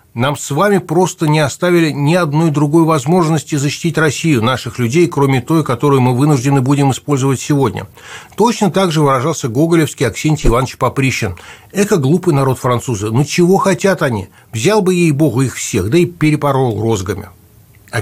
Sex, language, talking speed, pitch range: male, Russian, 165 wpm, 115-165 Hz